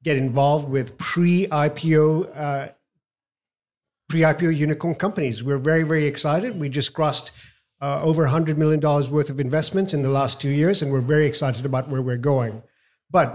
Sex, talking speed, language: male, 165 wpm, English